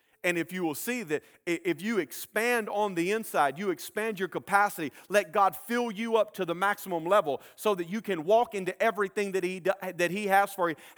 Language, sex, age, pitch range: English, male, 40-59, 170-215 Hz